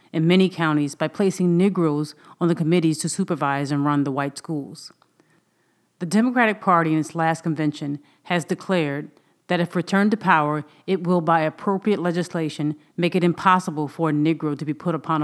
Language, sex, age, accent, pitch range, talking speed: English, female, 40-59, American, 155-185 Hz, 175 wpm